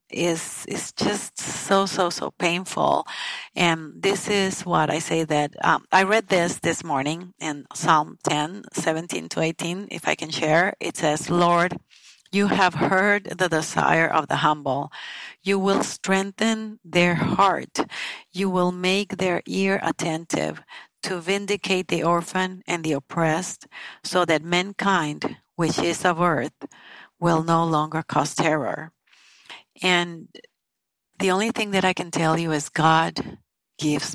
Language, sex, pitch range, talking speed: English, female, 155-185 Hz, 145 wpm